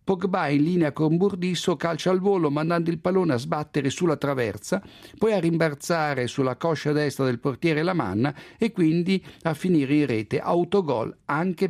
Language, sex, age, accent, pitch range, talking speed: Italian, male, 50-69, native, 135-180 Hz, 165 wpm